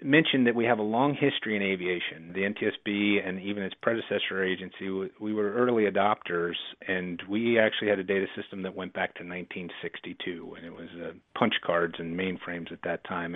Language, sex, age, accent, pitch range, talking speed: English, male, 40-59, American, 95-115 Hz, 195 wpm